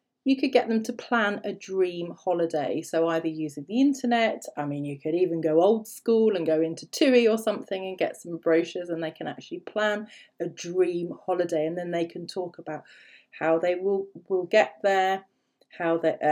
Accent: British